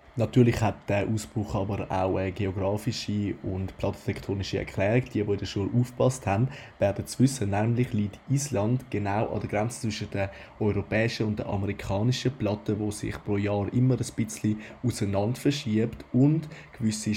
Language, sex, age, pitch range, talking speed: German, male, 20-39, 100-115 Hz, 155 wpm